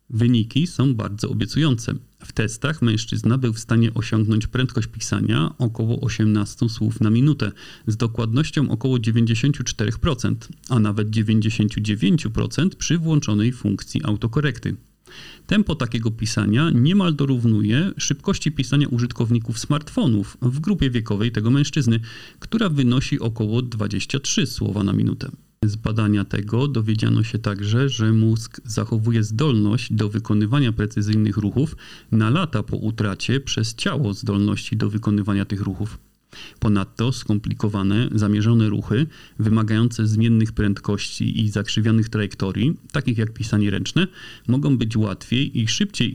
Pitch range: 105-130 Hz